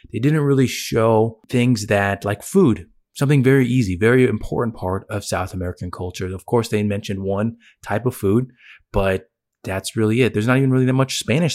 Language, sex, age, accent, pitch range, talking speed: English, male, 20-39, American, 95-125 Hz, 190 wpm